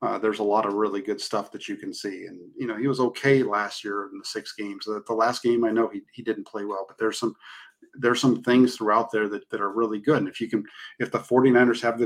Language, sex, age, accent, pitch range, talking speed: English, male, 40-59, American, 115-150 Hz, 280 wpm